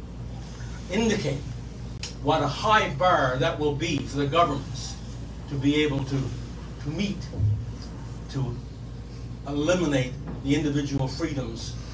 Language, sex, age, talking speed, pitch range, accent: English, male, 60-79, 110 wpm, 120-145 Hz, American